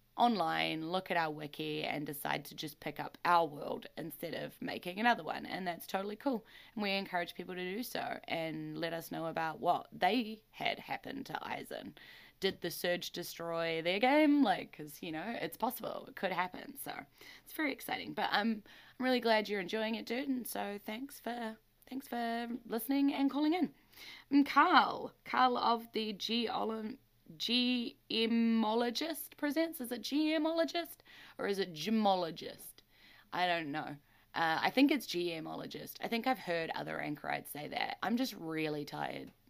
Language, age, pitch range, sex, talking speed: English, 10-29, 175-250 Hz, female, 170 wpm